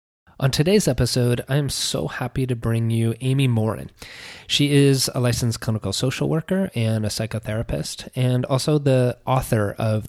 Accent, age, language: American, 30-49, English